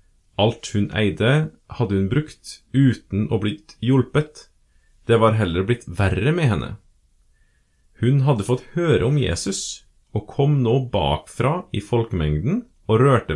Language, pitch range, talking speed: English, 95-140 Hz, 140 wpm